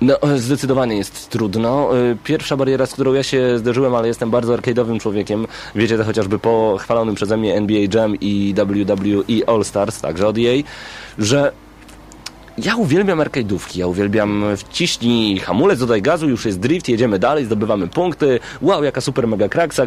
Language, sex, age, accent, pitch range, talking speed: Polish, male, 30-49, native, 105-130 Hz, 165 wpm